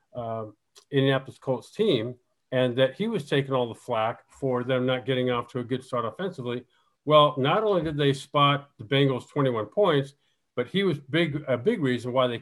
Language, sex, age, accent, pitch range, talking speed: English, male, 50-69, American, 125-150 Hz, 200 wpm